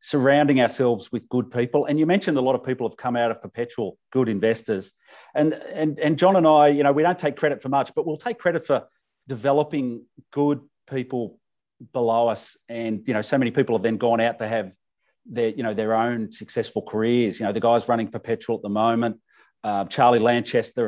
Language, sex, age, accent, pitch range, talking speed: English, male, 40-59, Australian, 110-140 Hz, 215 wpm